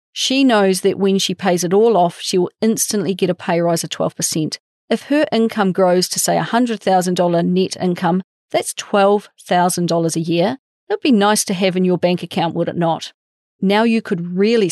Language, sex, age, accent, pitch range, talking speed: English, female, 40-59, Australian, 175-220 Hz, 190 wpm